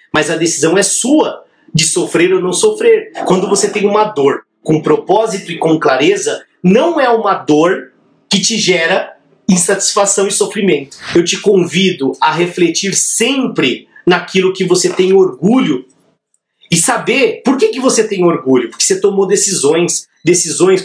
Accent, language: Brazilian, Portuguese